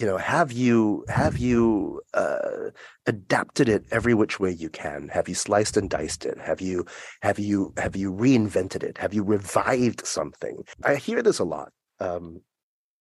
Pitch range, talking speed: 95-145 Hz, 175 wpm